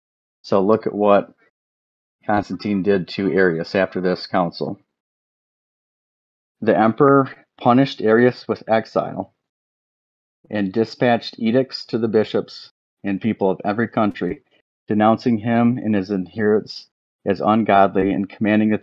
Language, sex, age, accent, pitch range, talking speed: English, male, 30-49, American, 95-110 Hz, 120 wpm